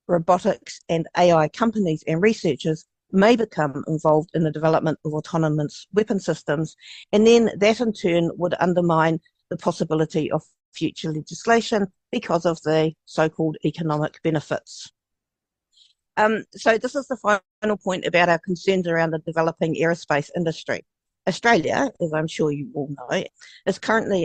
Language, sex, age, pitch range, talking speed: English, female, 50-69, 155-195 Hz, 145 wpm